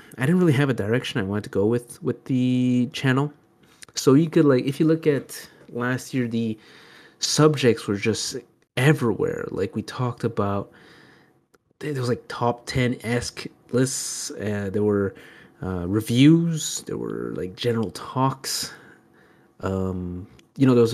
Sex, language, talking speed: male, English, 155 wpm